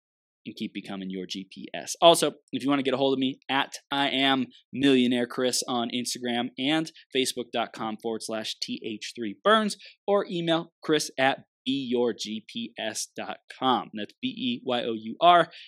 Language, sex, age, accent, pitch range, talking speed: English, male, 20-39, American, 115-160 Hz, 130 wpm